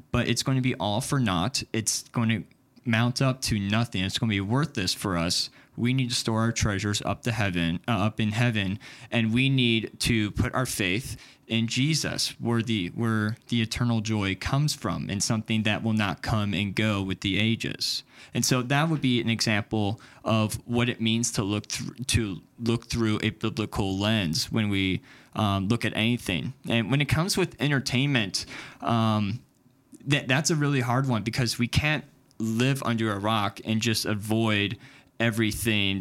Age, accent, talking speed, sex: 20-39, American, 185 wpm, male